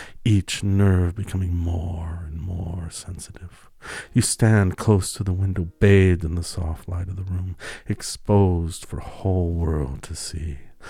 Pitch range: 85-100 Hz